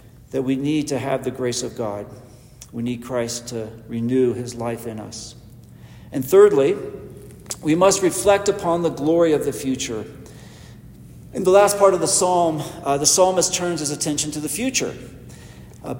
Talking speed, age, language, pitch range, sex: 175 wpm, 50-69, English, 150-220 Hz, male